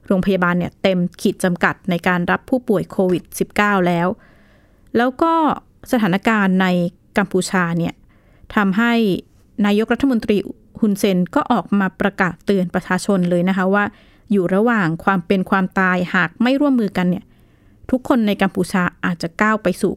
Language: Thai